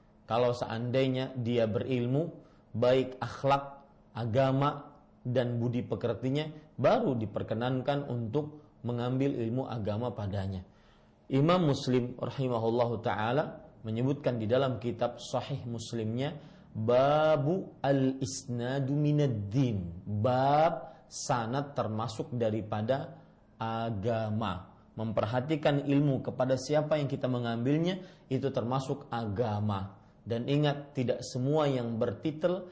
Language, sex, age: Malay, male, 40-59